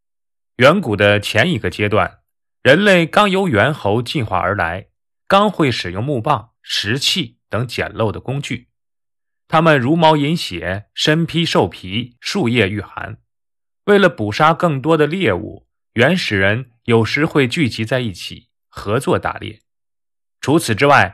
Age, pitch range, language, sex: 20-39, 105-150 Hz, Chinese, male